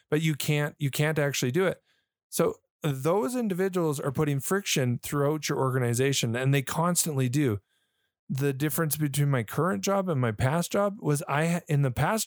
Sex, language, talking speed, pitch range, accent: male, English, 175 wpm, 120-150 Hz, American